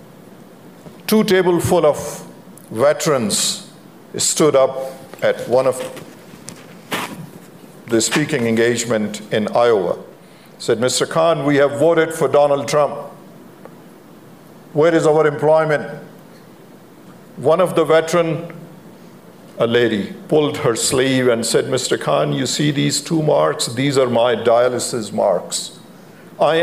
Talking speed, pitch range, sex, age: 115 wpm, 130-160 Hz, male, 50-69